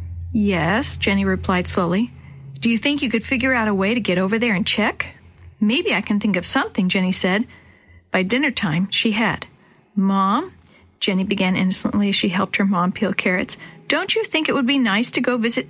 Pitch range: 195-255 Hz